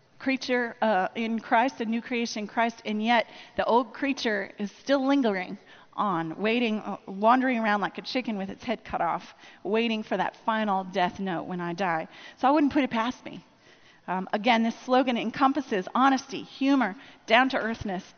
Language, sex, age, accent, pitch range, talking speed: English, female, 40-59, American, 205-260 Hz, 175 wpm